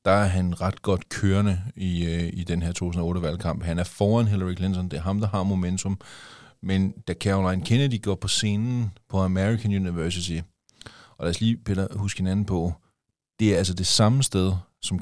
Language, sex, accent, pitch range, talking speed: Danish, male, native, 95-110 Hz, 190 wpm